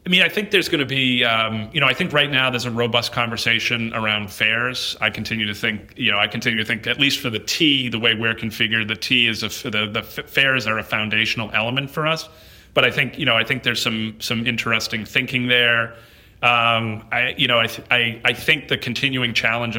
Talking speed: 235 wpm